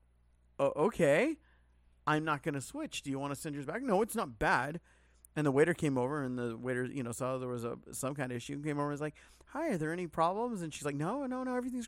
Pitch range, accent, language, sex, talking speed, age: 110-155 Hz, American, English, male, 275 wpm, 30-49